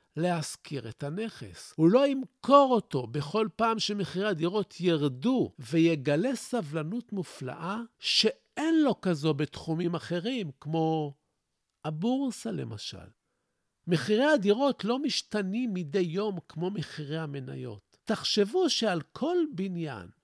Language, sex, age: Hebrew, male, 50-69